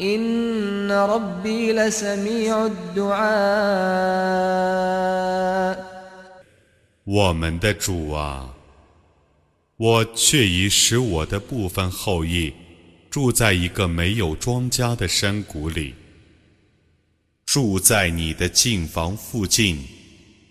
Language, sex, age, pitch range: Arabic, male, 30-49, 85-120 Hz